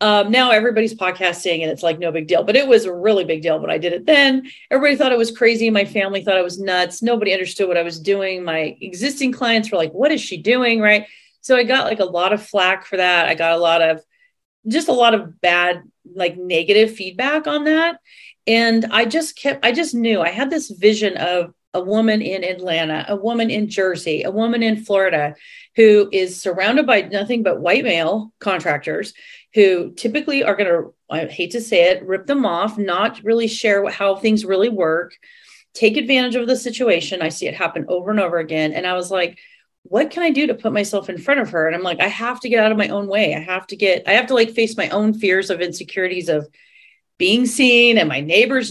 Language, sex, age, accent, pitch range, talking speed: English, female, 40-59, American, 180-240 Hz, 230 wpm